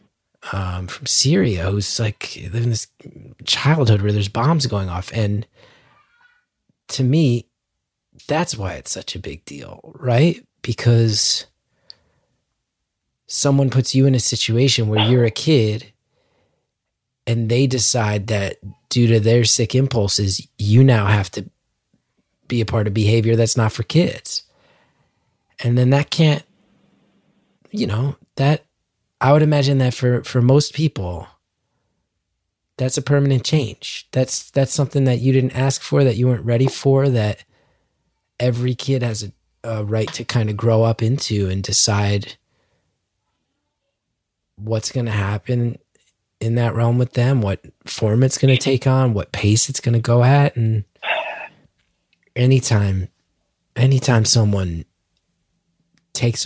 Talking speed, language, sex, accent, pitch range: 140 wpm, English, male, American, 105-135 Hz